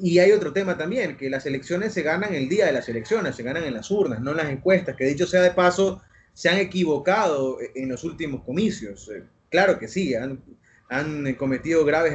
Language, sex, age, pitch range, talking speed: Spanish, male, 30-49, 145-190 Hz, 215 wpm